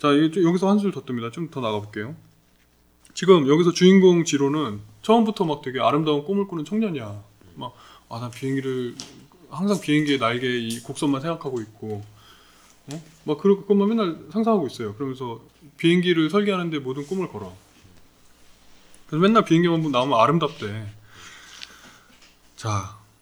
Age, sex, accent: 20-39, male, native